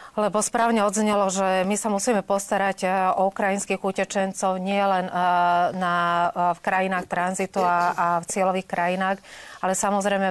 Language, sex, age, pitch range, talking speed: Slovak, female, 30-49, 175-195 Hz, 150 wpm